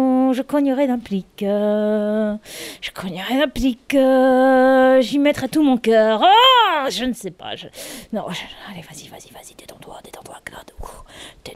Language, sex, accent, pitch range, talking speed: French, female, French, 205-305 Hz, 150 wpm